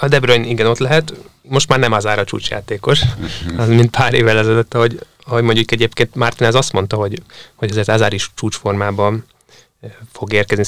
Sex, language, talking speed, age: male, Hungarian, 180 wpm, 20-39